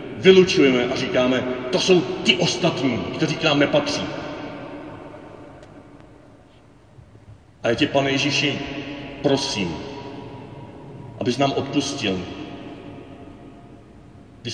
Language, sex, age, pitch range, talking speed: Czech, male, 40-59, 115-140 Hz, 85 wpm